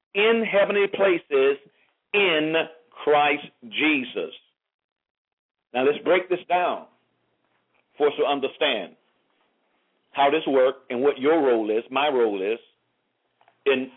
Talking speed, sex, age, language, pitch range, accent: 115 wpm, male, 50-69, English, 150-230 Hz, American